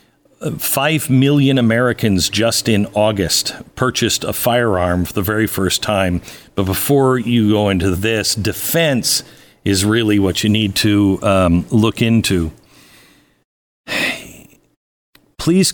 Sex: male